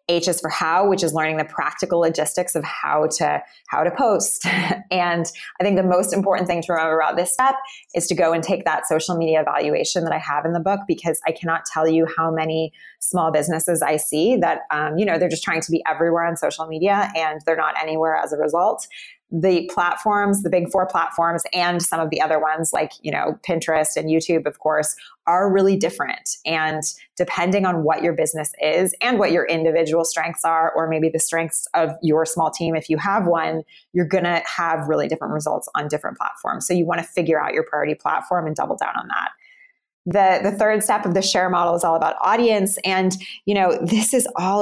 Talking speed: 220 wpm